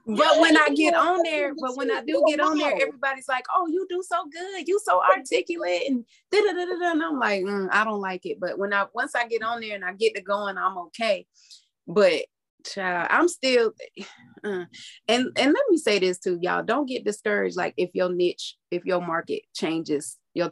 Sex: female